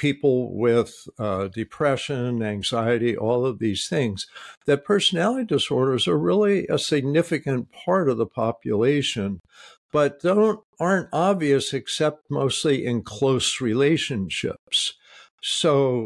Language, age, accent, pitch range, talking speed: English, 60-79, American, 115-145 Hz, 110 wpm